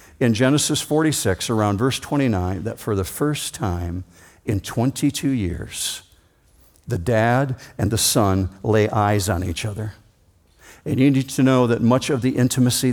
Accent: American